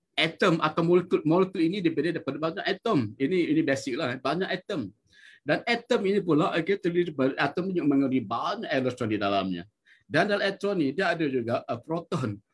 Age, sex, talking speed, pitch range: 50-69, male, 180 wpm, 125-185 Hz